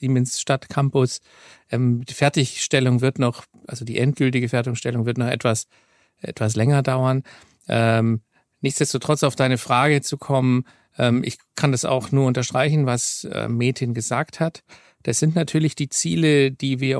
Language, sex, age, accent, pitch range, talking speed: German, male, 50-69, German, 125-150 Hz, 140 wpm